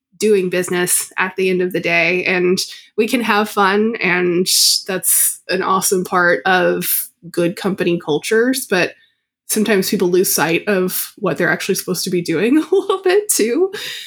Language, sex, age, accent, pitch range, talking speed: English, female, 20-39, American, 185-225 Hz, 165 wpm